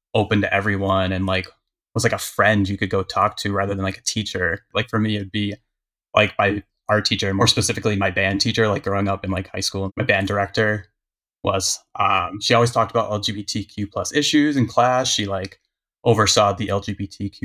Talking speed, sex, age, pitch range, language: 205 wpm, male, 20-39, 100-110 Hz, English